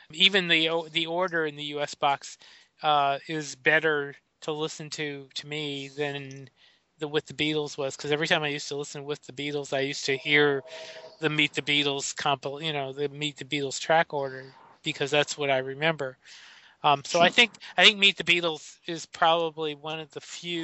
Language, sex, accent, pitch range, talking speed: English, male, American, 145-165 Hz, 200 wpm